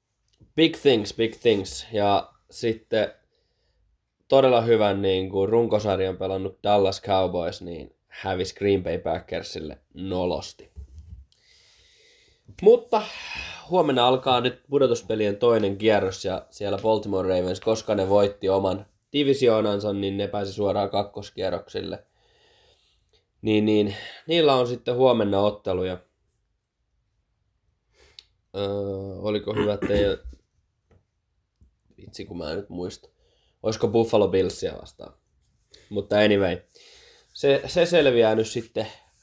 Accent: native